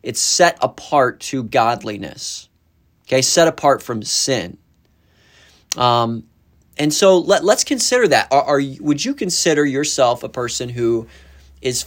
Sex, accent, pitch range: male, American, 115-150 Hz